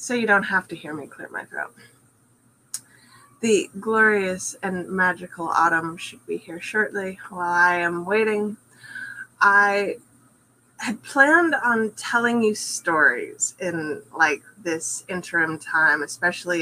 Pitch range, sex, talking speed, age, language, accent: 165-240 Hz, female, 130 wpm, 20-39, English, American